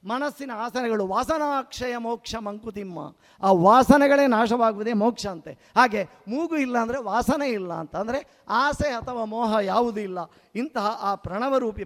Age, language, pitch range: 50-69, Kannada, 205-255 Hz